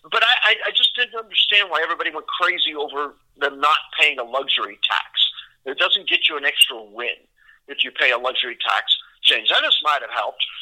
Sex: male